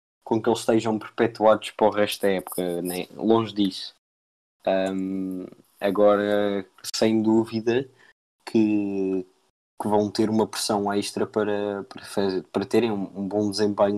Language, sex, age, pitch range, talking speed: Portuguese, male, 20-39, 100-110 Hz, 135 wpm